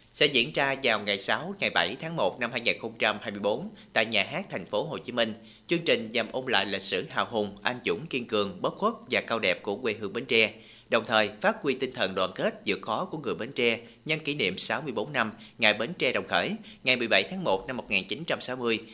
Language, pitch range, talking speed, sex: Vietnamese, 110-130 Hz, 230 wpm, male